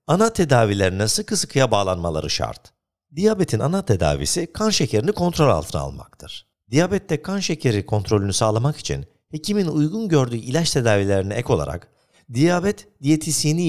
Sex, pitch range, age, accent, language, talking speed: male, 110-165 Hz, 50-69, native, Turkish, 125 wpm